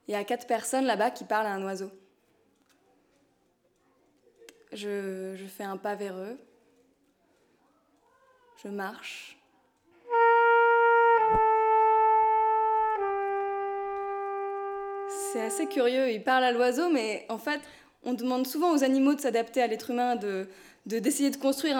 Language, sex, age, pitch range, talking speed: French, female, 20-39, 235-325 Hz, 125 wpm